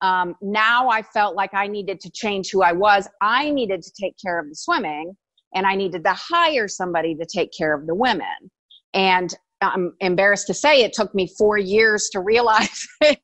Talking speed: 195 wpm